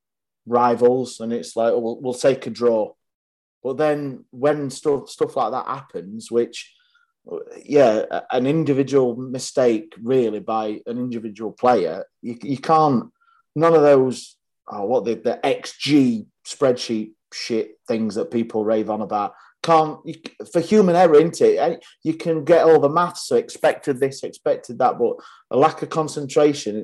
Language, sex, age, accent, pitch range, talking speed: English, male, 30-49, British, 120-160 Hz, 155 wpm